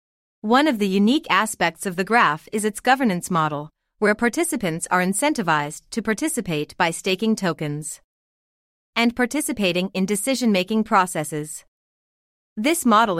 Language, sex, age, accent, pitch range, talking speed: English, female, 30-49, American, 175-235 Hz, 125 wpm